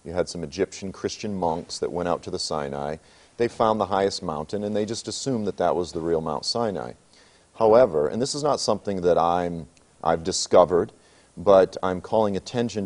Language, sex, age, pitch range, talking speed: English, male, 40-59, 85-115 Hz, 190 wpm